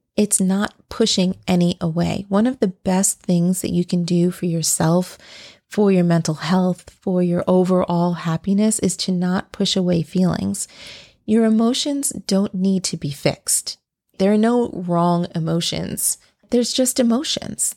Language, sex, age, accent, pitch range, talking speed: English, female, 30-49, American, 180-220 Hz, 150 wpm